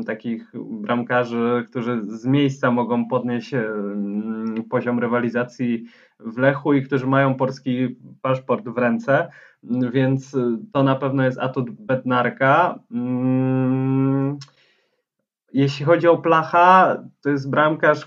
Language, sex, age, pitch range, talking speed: Polish, male, 20-39, 125-150 Hz, 105 wpm